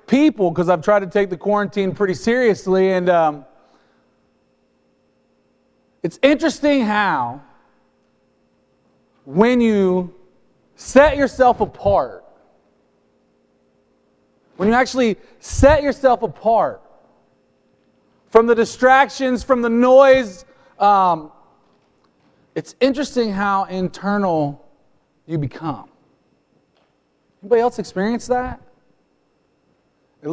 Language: English